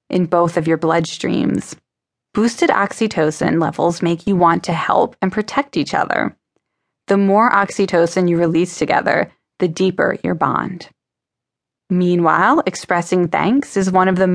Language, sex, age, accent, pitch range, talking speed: English, female, 20-39, American, 170-205 Hz, 140 wpm